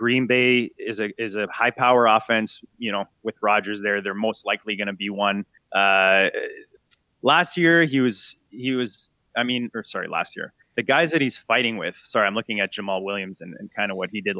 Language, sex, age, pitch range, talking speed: English, male, 20-39, 105-130 Hz, 215 wpm